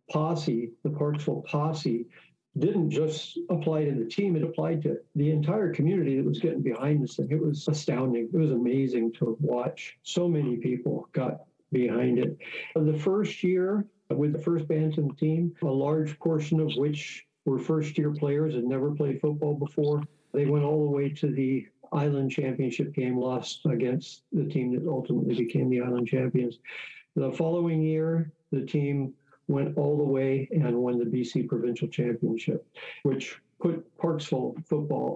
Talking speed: 165 wpm